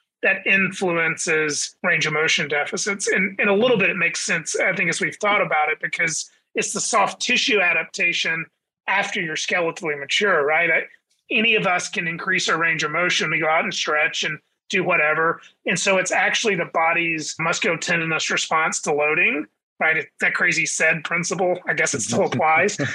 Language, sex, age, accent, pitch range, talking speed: English, male, 30-49, American, 165-200 Hz, 185 wpm